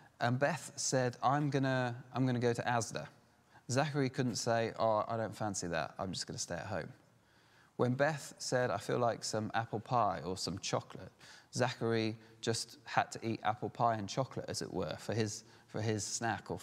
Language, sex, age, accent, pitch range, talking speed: English, male, 20-39, British, 100-125 Hz, 205 wpm